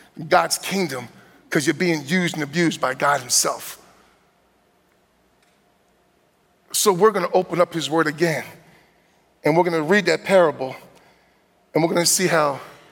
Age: 40-59